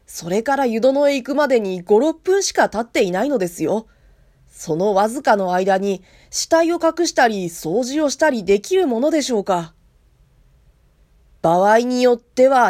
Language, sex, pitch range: Japanese, female, 175-265 Hz